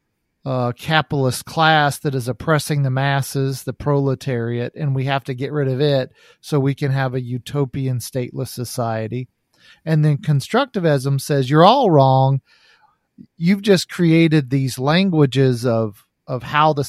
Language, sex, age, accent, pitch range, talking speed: English, male, 40-59, American, 125-150 Hz, 150 wpm